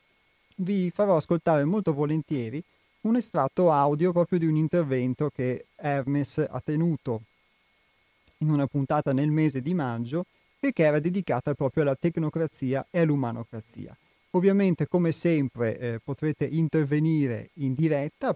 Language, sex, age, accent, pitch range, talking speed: Italian, male, 30-49, native, 125-160 Hz, 130 wpm